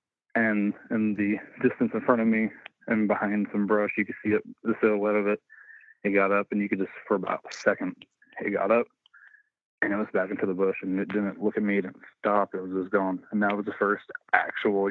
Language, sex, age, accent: English, male, 20-39, American